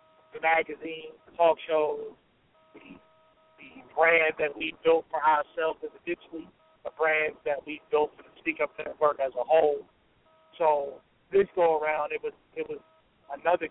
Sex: male